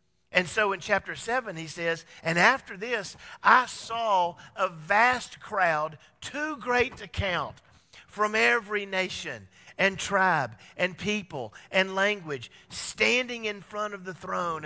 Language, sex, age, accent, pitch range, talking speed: English, male, 50-69, American, 155-225 Hz, 140 wpm